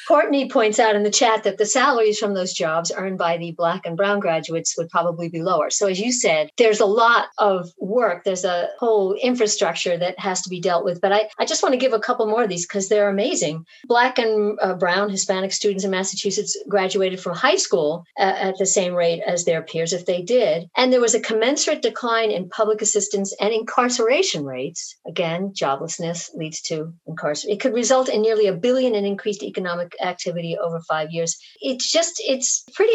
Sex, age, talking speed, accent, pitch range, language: female, 50-69, 205 wpm, American, 180-225 Hz, English